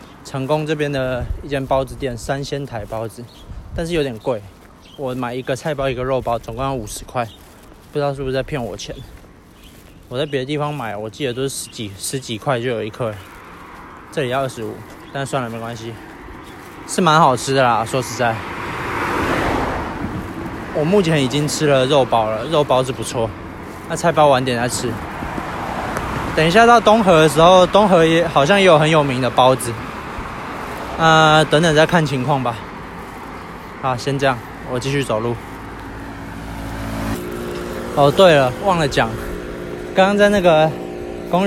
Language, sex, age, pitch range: Chinese, male, 20-39, 105-145 Hz